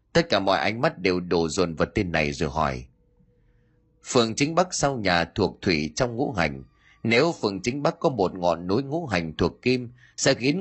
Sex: male